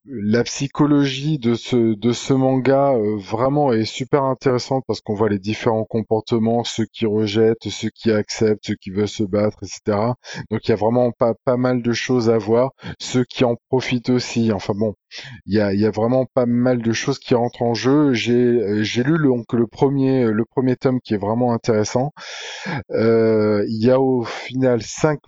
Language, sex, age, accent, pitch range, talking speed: French, male, 20-39, French, 110-125 Hz, 200 wpm